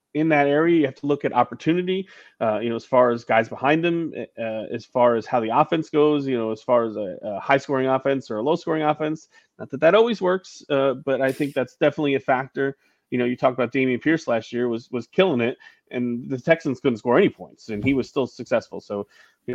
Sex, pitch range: male, 110-135 Hz